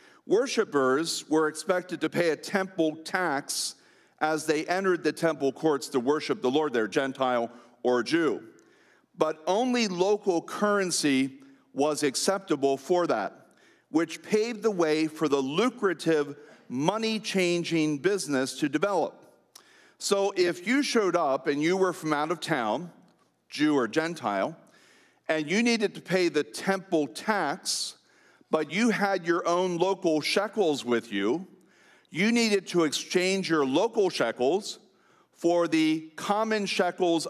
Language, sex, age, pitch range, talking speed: English, male, 40-59, 150-200 Hz, 135 wpm